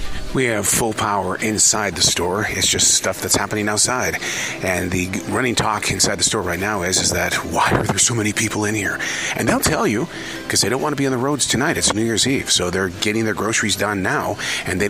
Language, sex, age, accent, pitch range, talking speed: English, male, 40-59, American, 95-115 Hz, 240 wpm